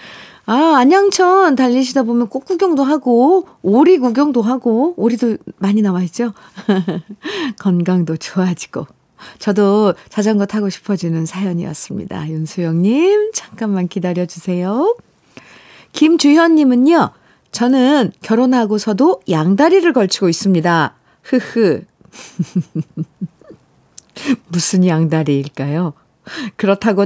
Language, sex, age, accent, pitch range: Korean, female, 50-69, native, 180-275 Hz